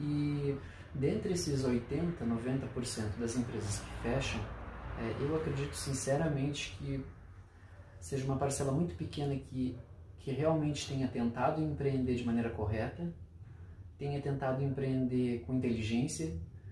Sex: male